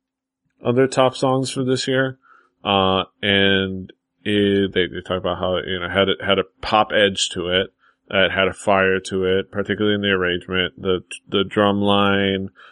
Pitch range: 95-115 Hz